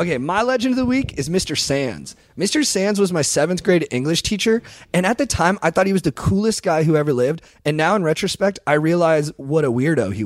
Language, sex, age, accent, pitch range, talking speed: English, male, 30-49, American, 125-170 Hz, 240 wpm